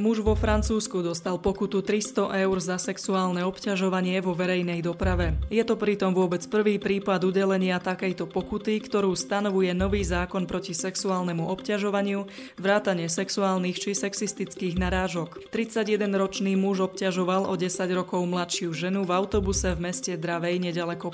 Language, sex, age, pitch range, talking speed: Slovak, female, 20-39, 180-200 Hz, 135 wpm